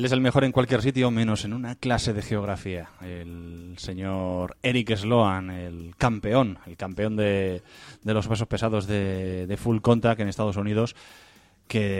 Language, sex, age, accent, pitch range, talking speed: Spanish, male, 20-39, Spanish, 95-115 Hz, 165 wpm